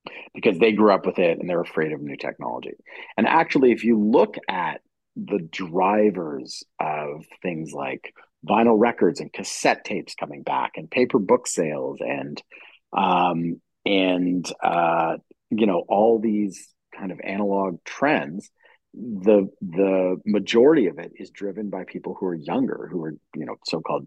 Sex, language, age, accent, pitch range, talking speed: male, English, 40-59, American, 95-135 Hz, 155 wpm